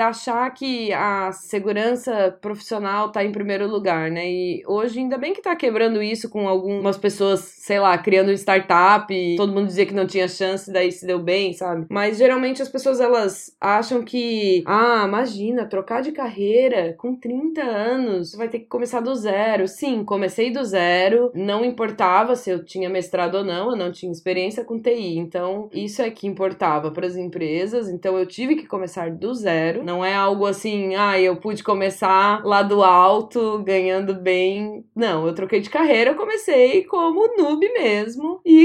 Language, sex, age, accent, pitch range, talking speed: Portuguese, female, 20-39, Brazilian, 190-245 Hz, 180 wpm